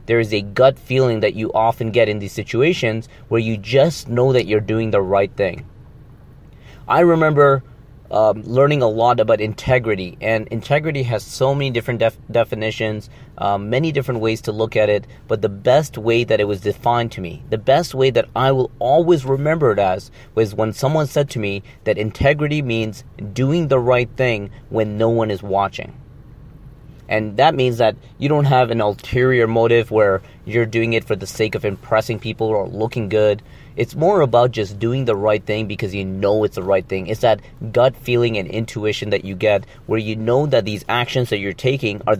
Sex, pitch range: male, 110-130 Hz